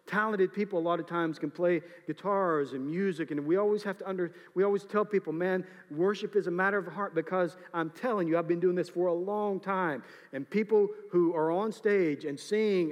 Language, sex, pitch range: English, male, 170-215 Hz